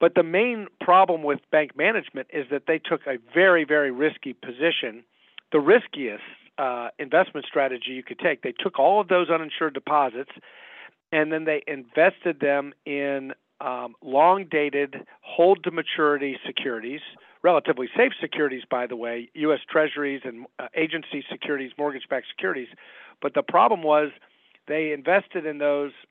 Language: English